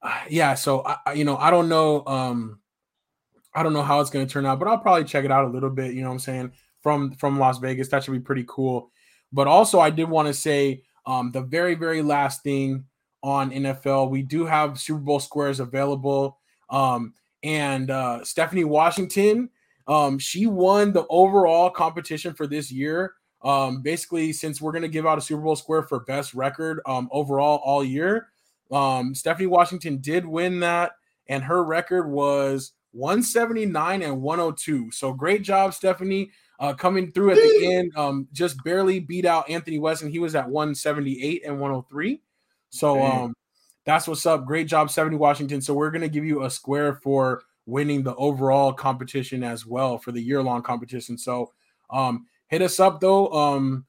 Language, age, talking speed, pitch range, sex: English, 20-39, 185 wpm, 135-165 Hz, male